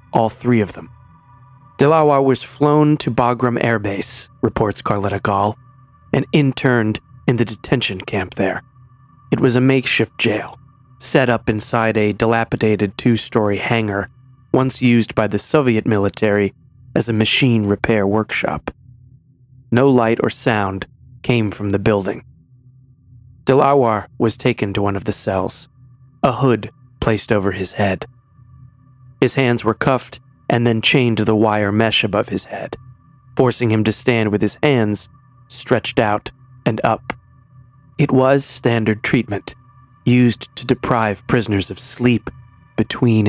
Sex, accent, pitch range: male, American, 105-130 Hz